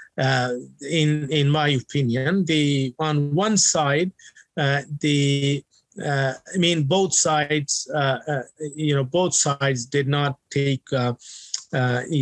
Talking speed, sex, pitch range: 130 wpm, male, 135-150 Hz